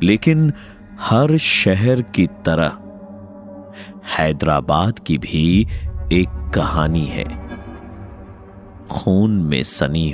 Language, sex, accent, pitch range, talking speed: Hindi, male, native, 80-115 Hz, 85 wpm